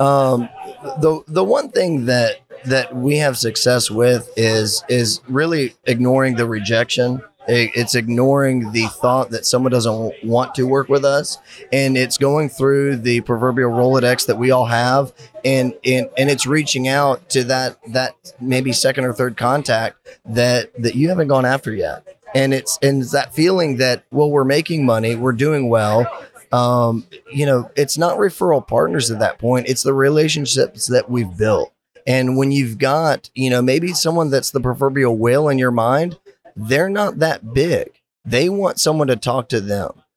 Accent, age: American, 20-39